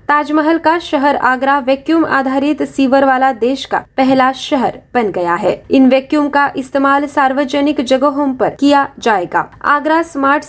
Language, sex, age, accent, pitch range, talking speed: Marathi, female, 20-39, native, 255-290 Hz, 150 wpm